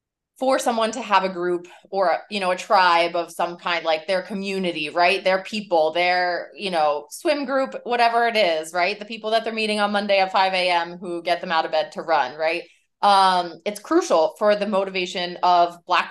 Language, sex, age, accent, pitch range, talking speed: English, female, 20-39, American, 170-210 Hz, 205 wpm